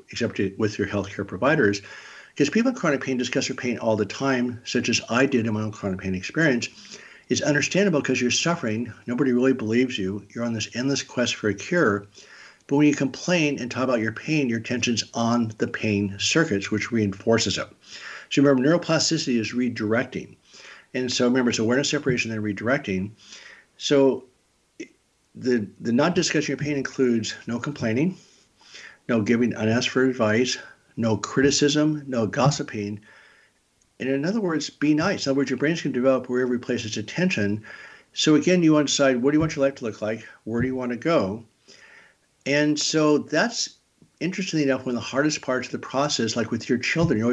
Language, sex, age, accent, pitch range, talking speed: English, male, 60-79, American, 110-145 Hz, 190 wpm